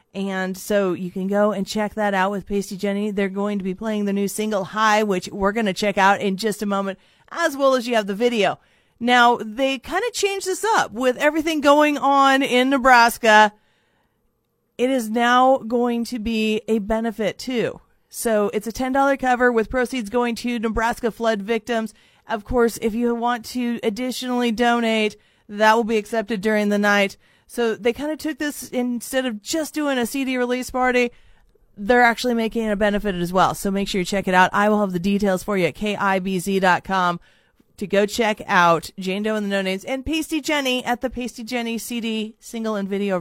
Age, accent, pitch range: 40-59, American, 200-250 Hz